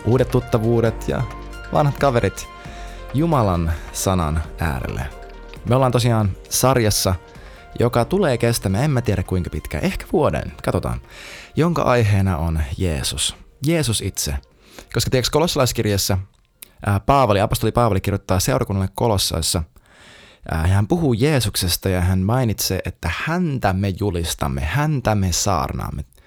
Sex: male